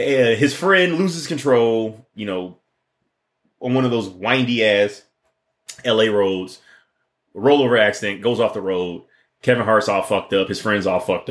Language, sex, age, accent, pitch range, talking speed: English, male, 30-49, American, 95-120 Hz, 155 wpm